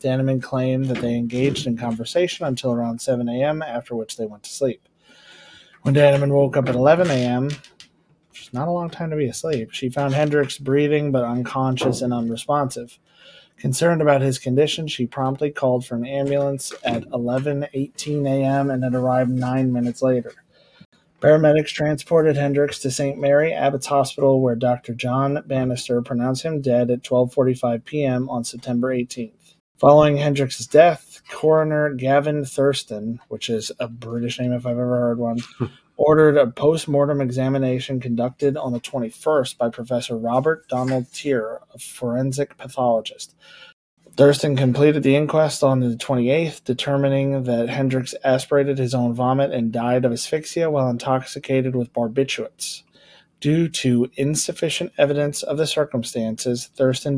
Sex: male